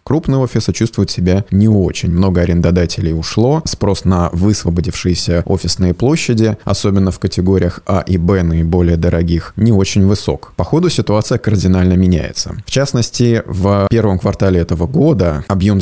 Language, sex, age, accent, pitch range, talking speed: Russian, male, 20-39, native, 90-110 Hz, 140 wpm